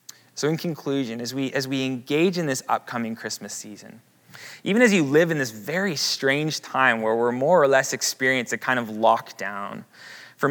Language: English